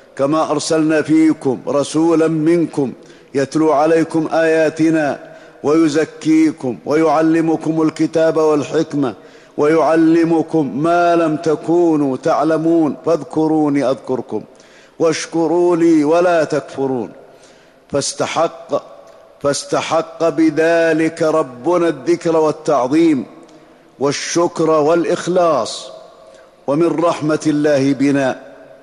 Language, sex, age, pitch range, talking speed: Arabic, male, 50-69, 150-165 Hz, 75 wpm